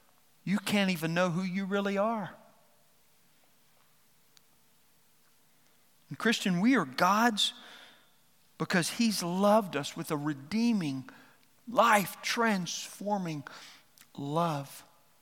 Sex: male